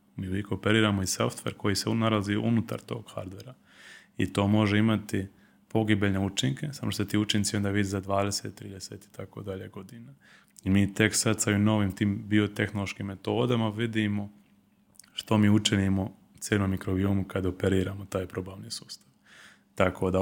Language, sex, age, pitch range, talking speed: Croatian, male, 20-39, 95-110 Hz, 150 wpm